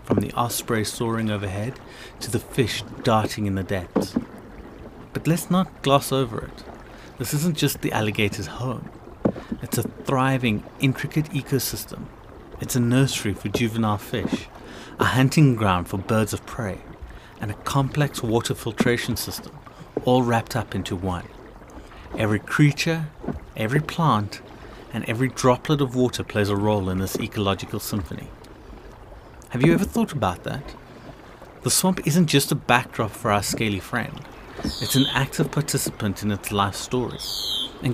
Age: 30-49